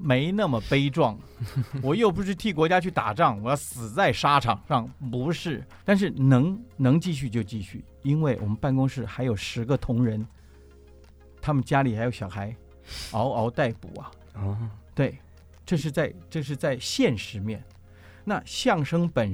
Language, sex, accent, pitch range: Chinese, male, native, 105-160 Hz